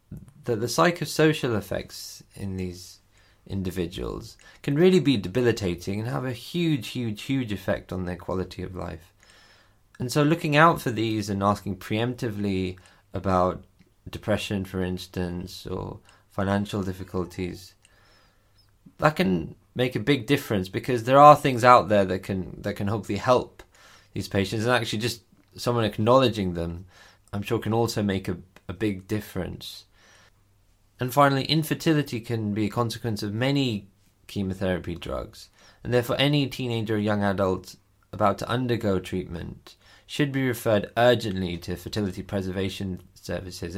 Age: 20-39